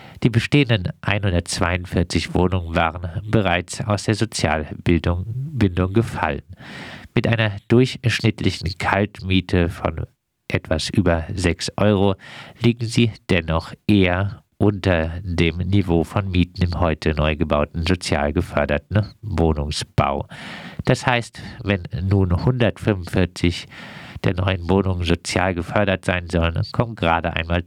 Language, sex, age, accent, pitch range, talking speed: German, male, 50-69, German, 85-105 Hz, 110 wpm